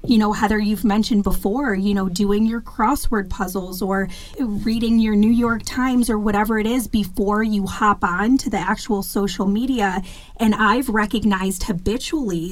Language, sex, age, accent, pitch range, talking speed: English, female, 30-49, American, 195-225 Hz, 170 wpm